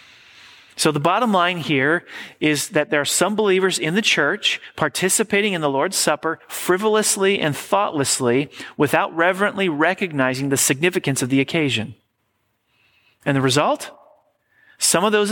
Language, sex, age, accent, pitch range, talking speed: English, male, 40-59, American, 120-175 Hz, 140 wpm